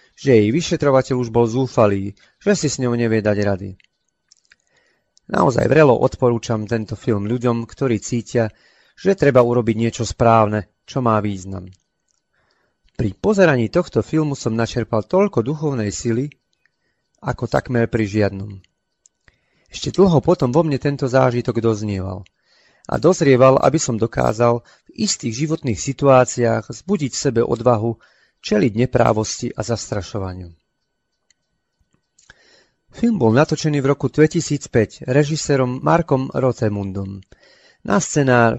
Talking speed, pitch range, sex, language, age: 120 wpm, 110-140 Hz, male, Slovak, 30-49